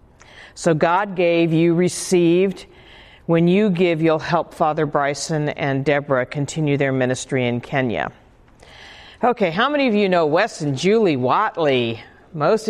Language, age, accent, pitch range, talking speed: English, 50-69, American, 145-185 Hz, 140 wpm